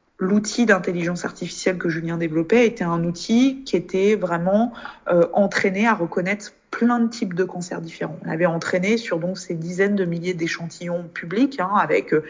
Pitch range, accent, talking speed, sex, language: 170-200 Hz, French, 170 wpm, female, French